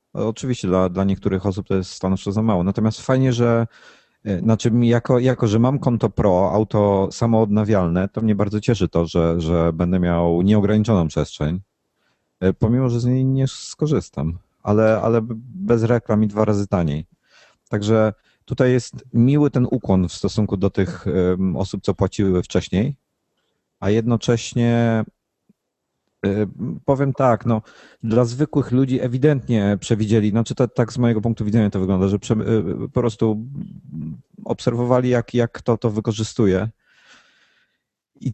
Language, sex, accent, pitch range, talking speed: Polish, male, native, 95-115 Hz, 140 wpm